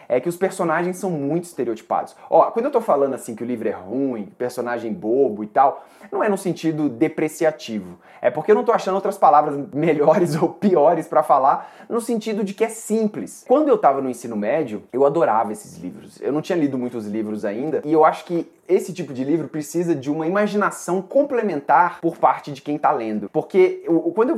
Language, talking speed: Portuguese, 205 wpm